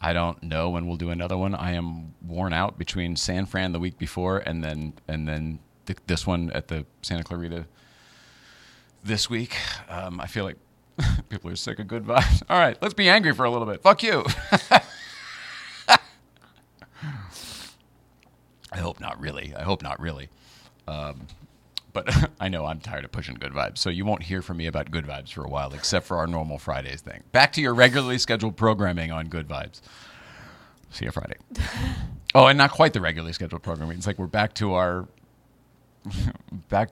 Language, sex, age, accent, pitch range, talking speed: English, male, 40-59, American, 80-100 Hz, 185 wpm